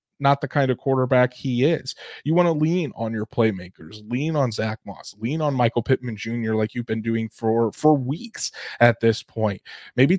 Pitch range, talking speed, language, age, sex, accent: 120-145 Hz, 200 wpm, English, 20-39, male, American